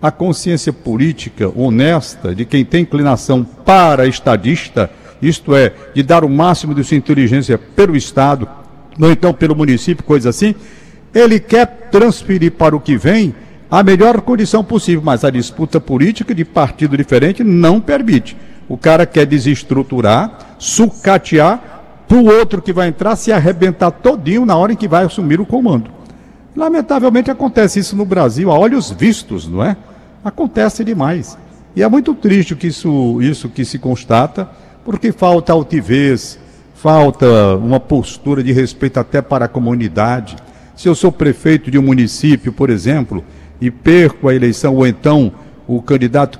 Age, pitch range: 60-79, 130-190 Hz